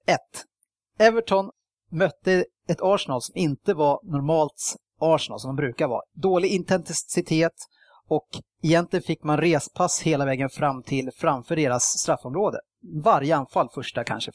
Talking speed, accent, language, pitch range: 135 wpm, Norwegian, Swedish, 145-190 Hz